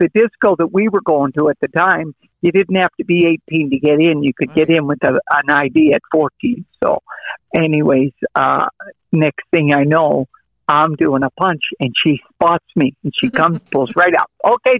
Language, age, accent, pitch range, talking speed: English, 60-79, American, 140-165 Hz, 205 wpm